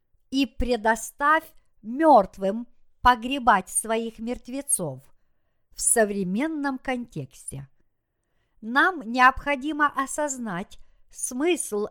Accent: native